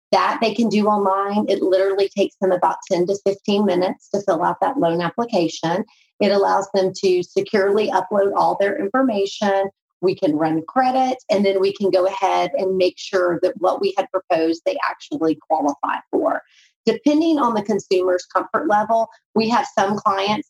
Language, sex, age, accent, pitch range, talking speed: English, female, 30-49, American, 185-225 Hz, 180 wpm